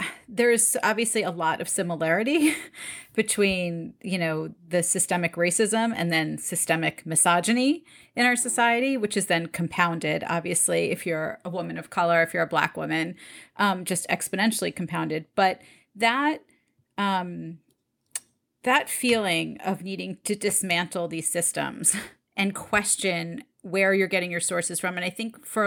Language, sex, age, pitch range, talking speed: English, female, 30-49, 170-210 Hz, 145 wpm